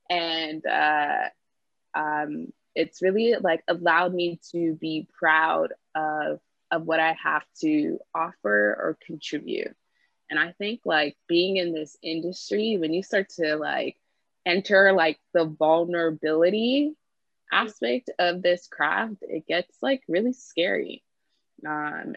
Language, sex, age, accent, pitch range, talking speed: English, female, 20-39, American, 160-210 Hz, 125 wpm